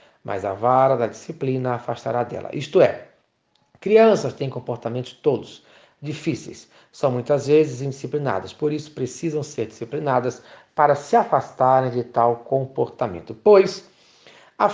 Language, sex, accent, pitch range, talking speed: Portuguese, male, Brazilian, 135-185 Hz, 125 wpm